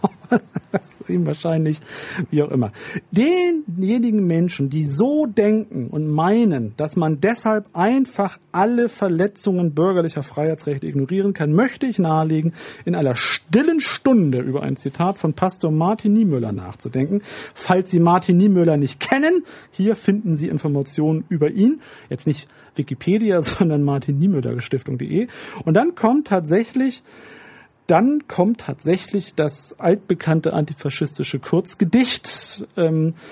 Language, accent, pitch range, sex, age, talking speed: German, German, 150-200 Hz, male, 40-59, 120 wpm